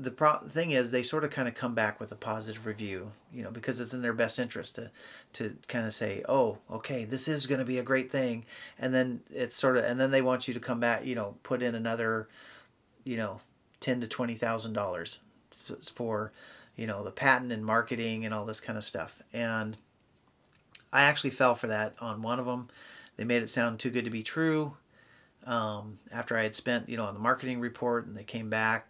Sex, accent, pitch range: male, American, 110-130 Hz